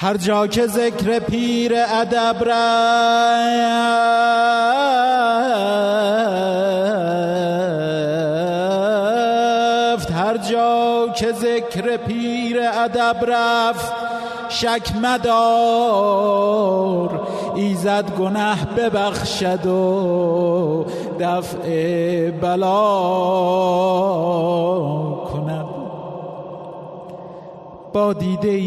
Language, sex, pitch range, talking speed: Persian, male, 175-230 Hz, 50 wpm